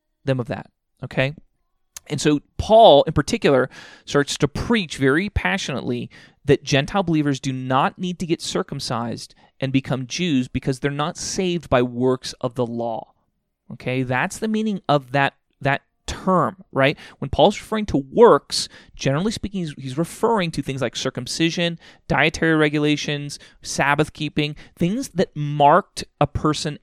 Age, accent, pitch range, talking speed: 30-49, American, 140-180 Hz, 145 wpm